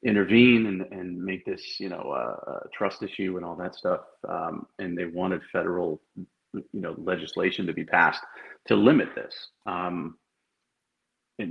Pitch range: 90-105 Hz